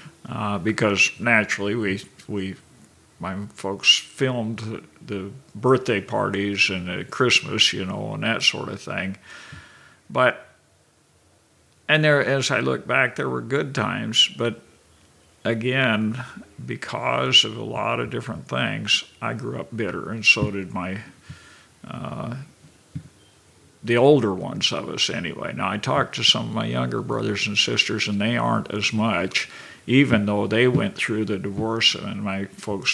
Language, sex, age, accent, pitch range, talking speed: English, male, 50-69, American, 95-115 Hz, 155 wpm